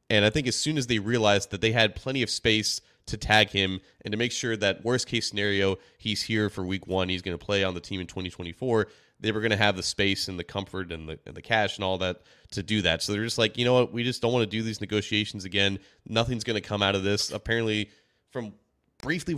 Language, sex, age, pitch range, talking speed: English, male, 30-49, 95-115 Hz, 265 wpm